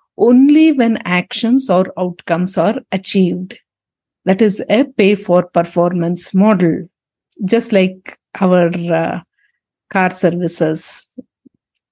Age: 50-69